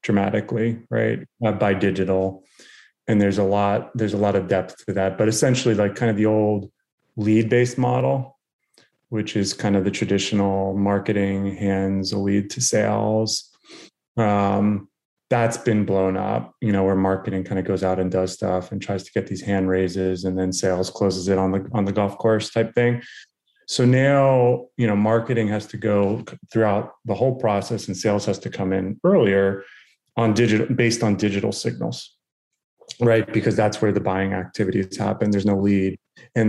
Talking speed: 180 wpm